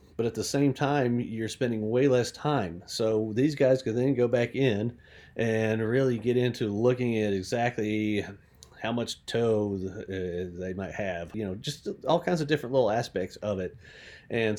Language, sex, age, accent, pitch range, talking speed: English, male, 40-59, American, 100-120 Hz, 175 wpm